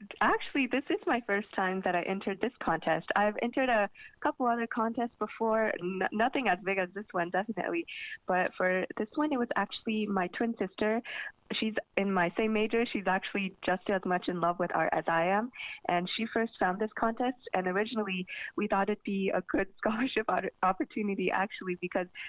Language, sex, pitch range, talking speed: English, female, 185-230 Hz, 190 wpm